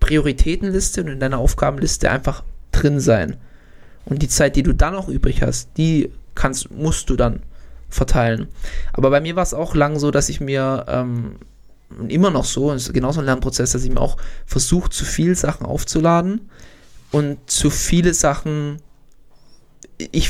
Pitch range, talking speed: 130-155 Hz, 170 wpm